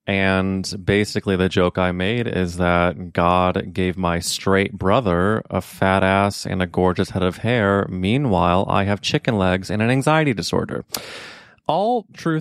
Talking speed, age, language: 160 wpm, 20-39, English